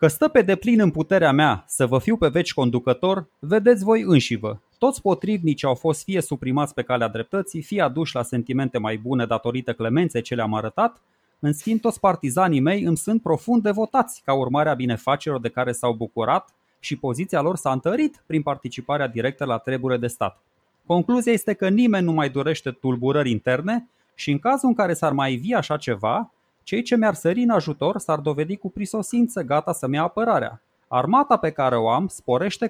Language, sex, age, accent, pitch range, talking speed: Romanian, male, 20-39, native, 135-205 Hz, 195 wpm